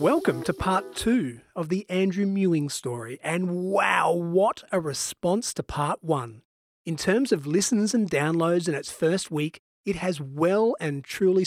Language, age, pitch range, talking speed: English, 30-49, 140-180 Hz, 165 wpm